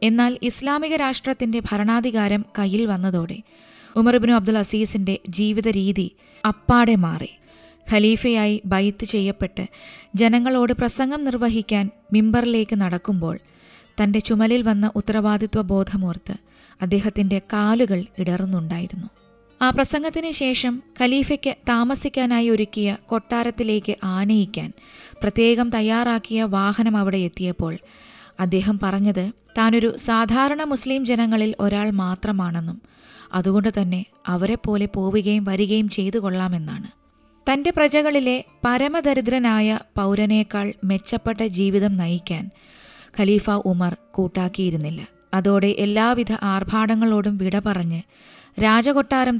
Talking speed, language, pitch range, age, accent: 85 wpm, Malayalam, 195-235 Hz, 20-39, native